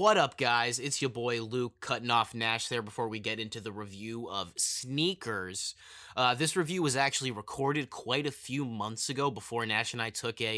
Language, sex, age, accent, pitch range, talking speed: English, male, 20-39, American, 120-145 Hz, 205 wpm